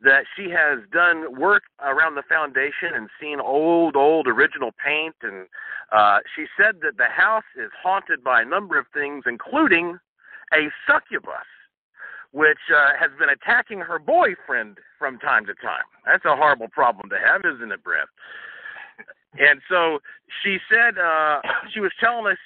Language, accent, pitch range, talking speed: English, American, 145-195 Hz, 160 wpm